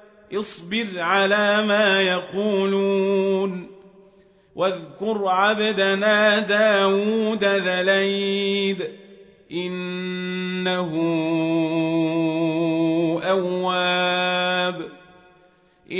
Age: 40-59